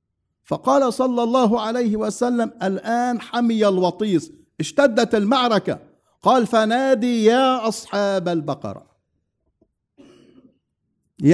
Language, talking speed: English, 85 wpm